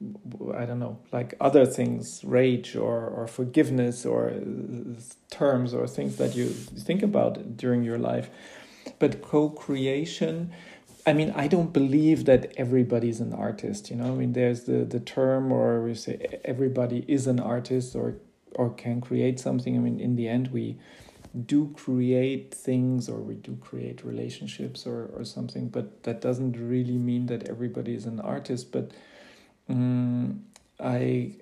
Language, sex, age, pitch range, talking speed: Russian, male, 40-59, 115-130 Hz, 160 wpm